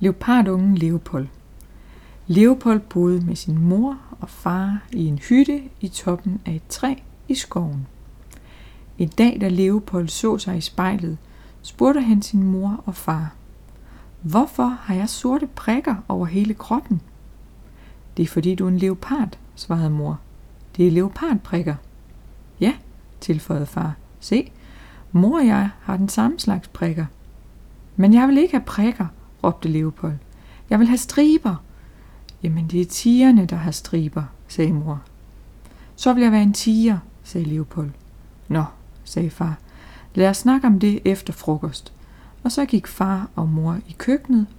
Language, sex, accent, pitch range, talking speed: Danish, female, native, 160-215 Hz, 150 wpm